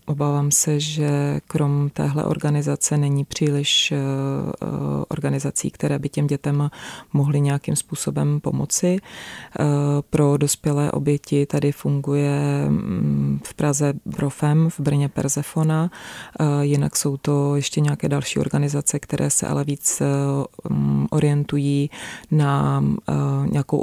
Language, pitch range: Czech, 135-145 Hz